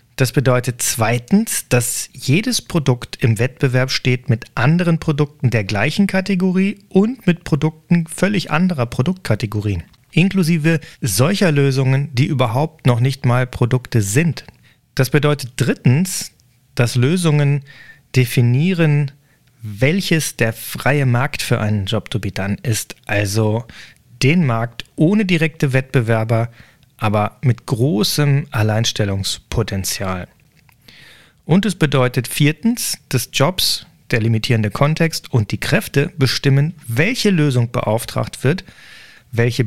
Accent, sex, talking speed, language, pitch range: German, male, 115 wpm, German, 115-155 Hz